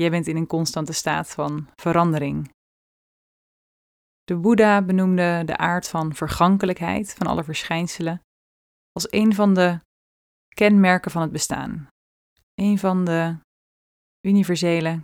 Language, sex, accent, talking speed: Dutch, female, Dutch, 120 wpm